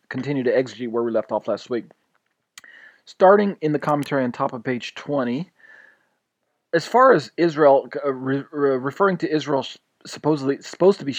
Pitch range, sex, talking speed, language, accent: 130-165 Hz, male, 175 wpm, English, American